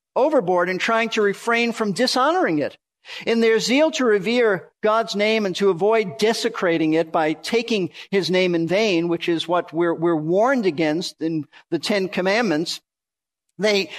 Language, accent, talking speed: English, American, 165 wpm